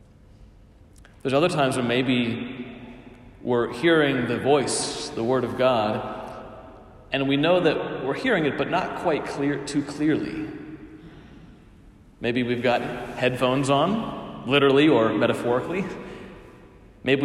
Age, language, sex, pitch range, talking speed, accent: 40-59, English, male, 120-145 Hz, 120 wpm, American